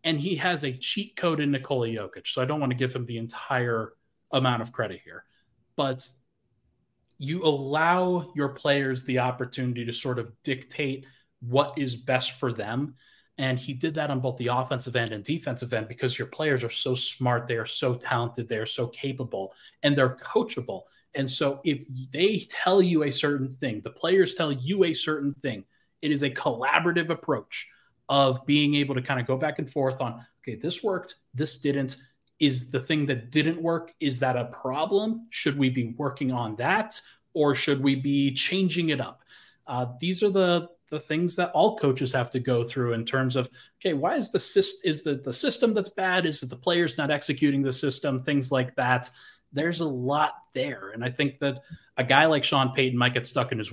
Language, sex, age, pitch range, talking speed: English, male, 30-49, 130-155 Hz, 205 wpm